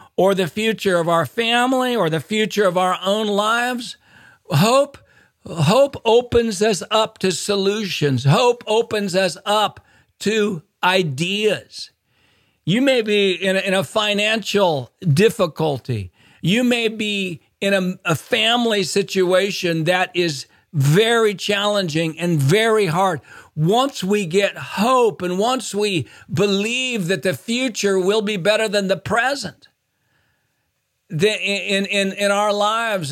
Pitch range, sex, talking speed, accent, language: 145-210 Hz, male, 130 wpm, American, English